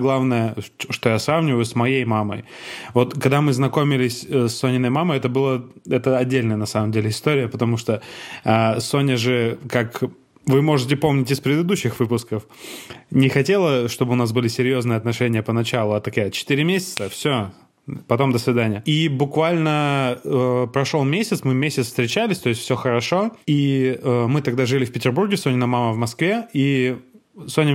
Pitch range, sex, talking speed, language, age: 120-145 Hz, male, 165 wpm, Russian, 20-39